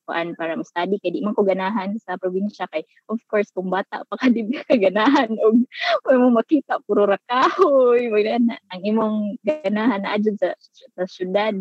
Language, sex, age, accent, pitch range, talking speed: Filipino, female, 20-39, native, 185-225 Hz, 165 wpm